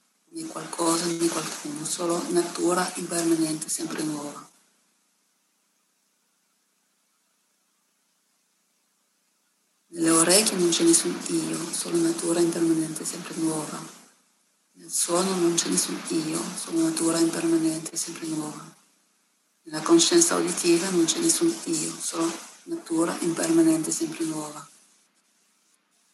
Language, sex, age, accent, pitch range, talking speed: Italian, female, 40-59, native, 165-230 Hz, 100 wpm